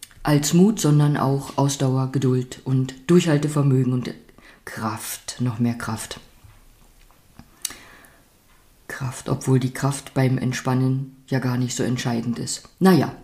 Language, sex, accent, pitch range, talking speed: German, female, German, 130-175 Hz, 120 wpm